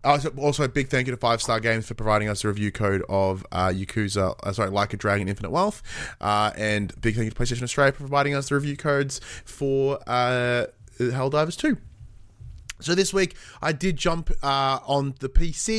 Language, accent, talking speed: English, Australian, 205 wpm